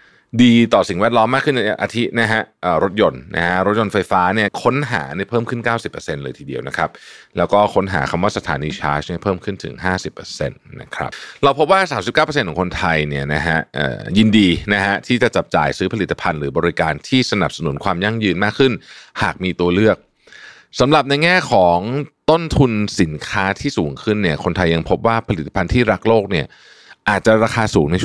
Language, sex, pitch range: Thai, male, 85-115 Hz